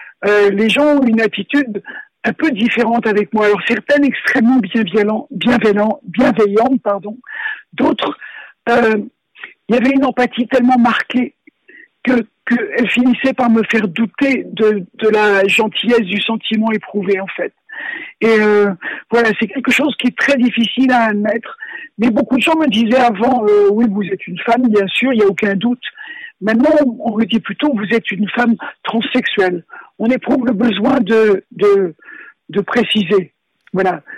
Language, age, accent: French, 50-69, French